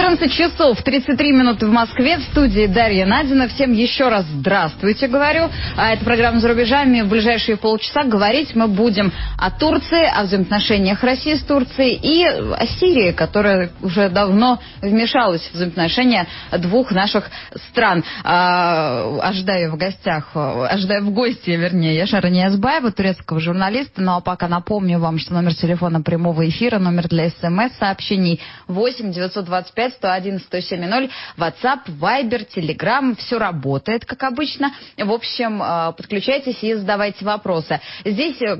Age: 20-39